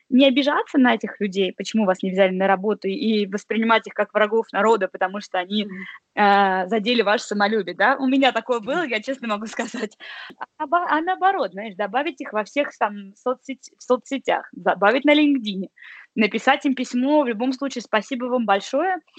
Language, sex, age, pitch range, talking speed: Russian, female, 20-39, 210-275 Hz, 180 wpm